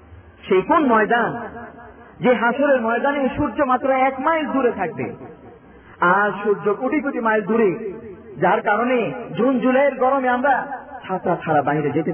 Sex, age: male, 40-59